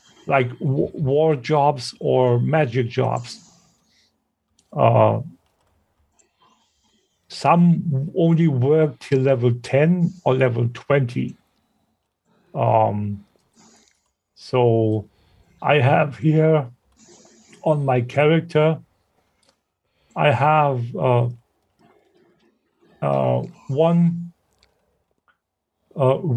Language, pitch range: English, 125-165 Hz